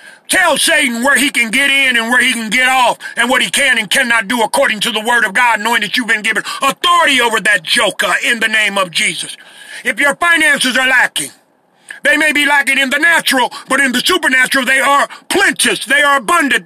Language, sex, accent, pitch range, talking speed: English, male, American, 225-285 Hz, 225 wpm